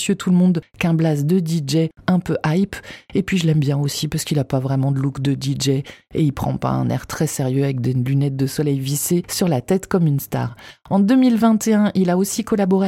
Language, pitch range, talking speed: French, 155-195 Hz, 235 wpm